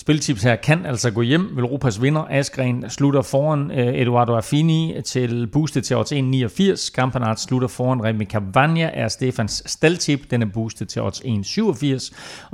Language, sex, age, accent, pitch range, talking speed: Danish, male, 30-49, native, 115-150 Hz, 155 wpm